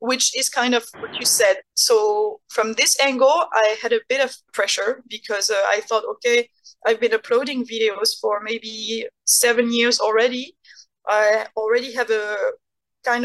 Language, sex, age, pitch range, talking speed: English, female, 20-39, 225-280 Hz, 165 wpm